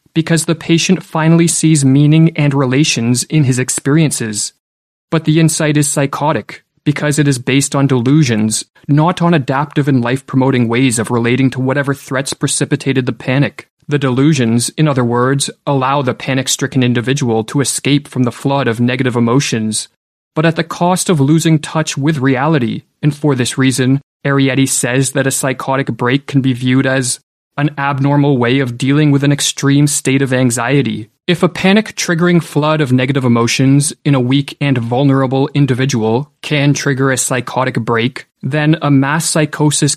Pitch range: 130-150 Hz